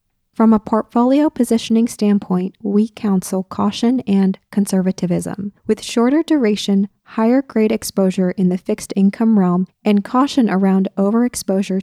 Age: 20-39